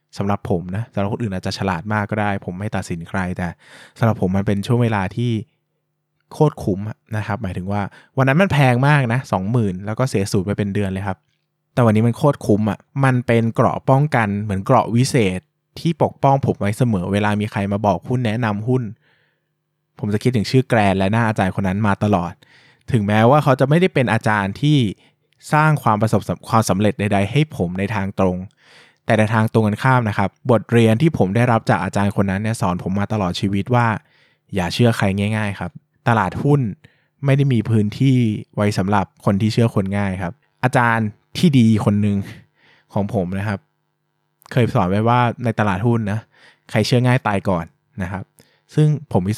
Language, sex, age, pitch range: Thai, male, 20-39, 100-130 Hz